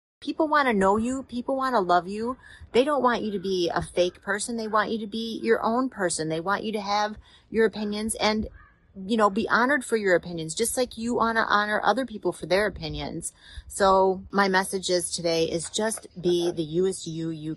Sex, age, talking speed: female, 30-49, 220 wpm